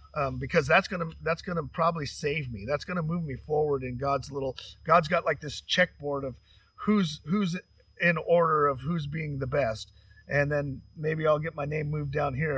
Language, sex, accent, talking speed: English, male, American, 215 wpm